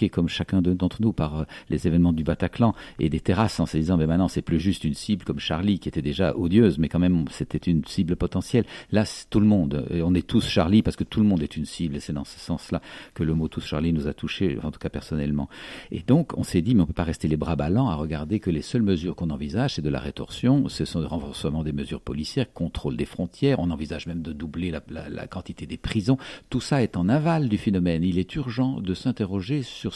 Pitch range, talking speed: 80-105 Hz, 260 wpm